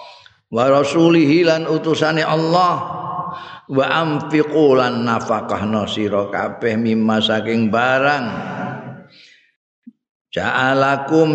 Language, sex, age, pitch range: Indonesian, male, 50-69, 110-145 Hz